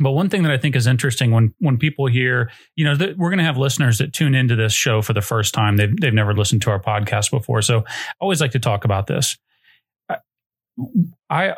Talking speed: 235 wpm